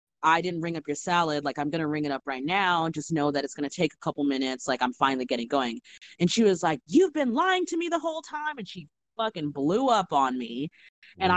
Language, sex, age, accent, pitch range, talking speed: English, female, 20-39, American, 150-215 Hz, 270 wpm